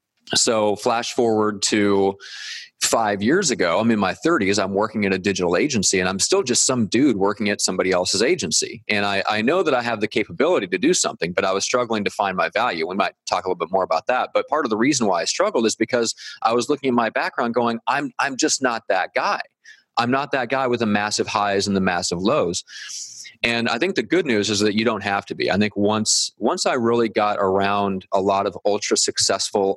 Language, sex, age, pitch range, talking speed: English, male, 30-49, 100-120 Hz, 235 wpm